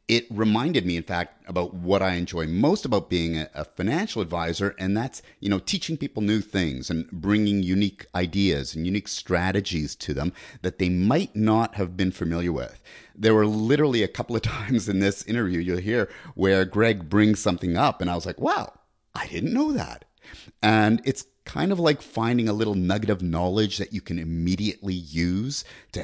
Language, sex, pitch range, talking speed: English, male, 90-105 Hz, 190 wpm